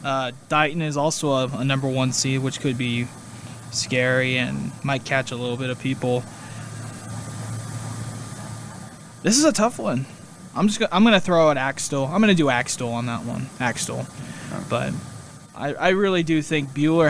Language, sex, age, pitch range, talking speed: English, male, 20-39, 130-160 Hz, 180 wpm